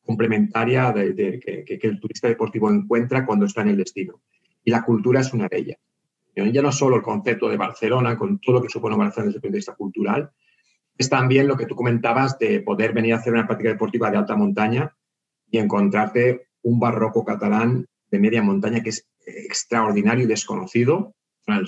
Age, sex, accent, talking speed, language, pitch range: 30-49, male, Spanish, 195 wpm, Spanish, 110-140 Hz